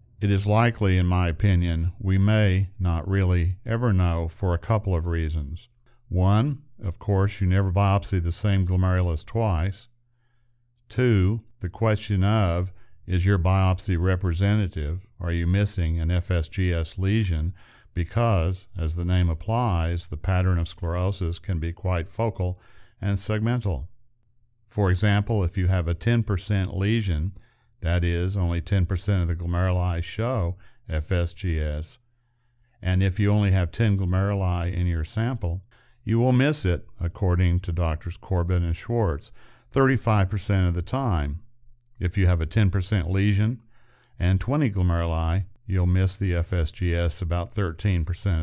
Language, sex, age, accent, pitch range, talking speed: English, male, 50-69, American, 90-110 Hz, 140 wpm